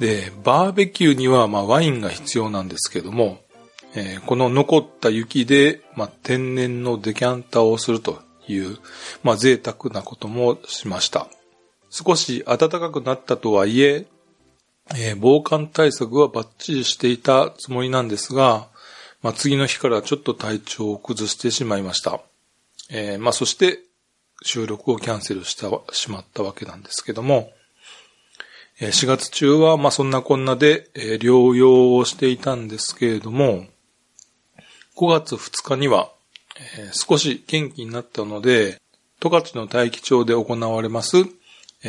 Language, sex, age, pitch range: Japanese, male, 40-59, 110-145 Hz